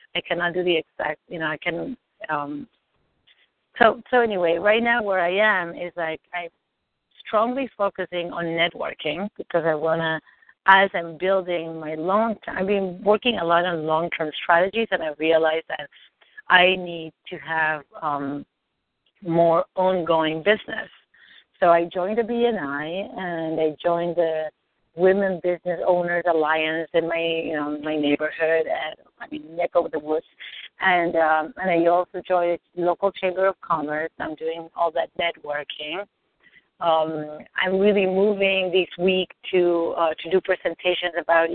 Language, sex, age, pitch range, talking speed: English, female, 40-59, 160-185 Hz, 165 wpm